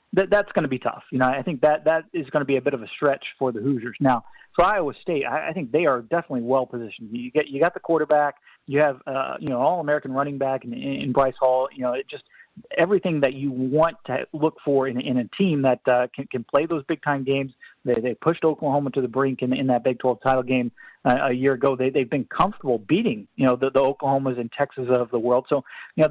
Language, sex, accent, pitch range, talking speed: English, male, American, 125-150 Hz, 260 wpm